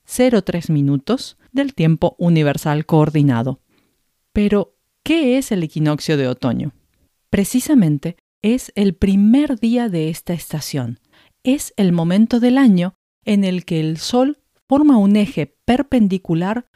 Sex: female